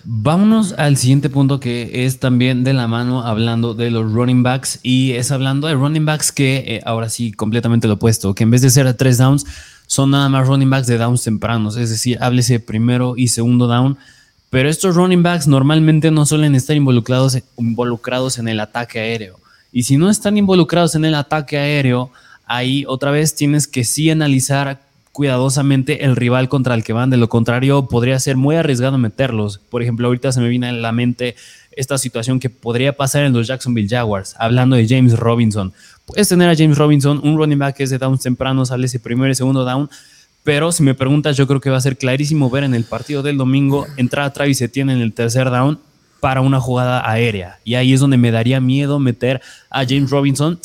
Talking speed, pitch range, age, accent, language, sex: 210 wpm, 120-140 Hz, 20-39, Mexican, Spanish, male